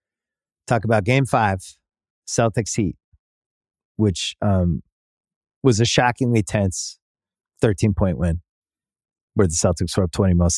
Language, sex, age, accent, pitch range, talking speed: English, male, 30-49, American, 90-125 Hz, 120 wpm